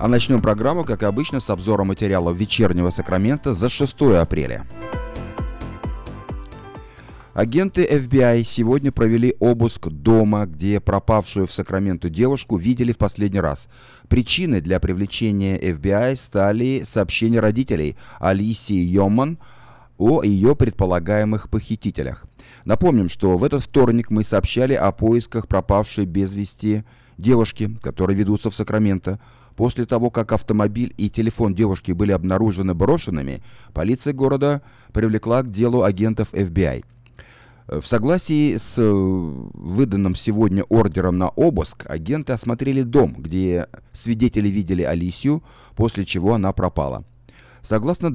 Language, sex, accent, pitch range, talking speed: Russian, male, native, 95-120 Hz, 120 wpm